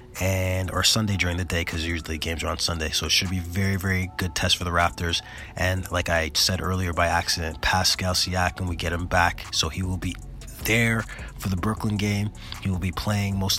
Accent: American